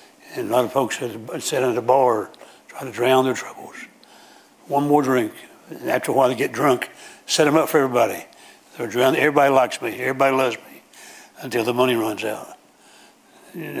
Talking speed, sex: 185 wpm, male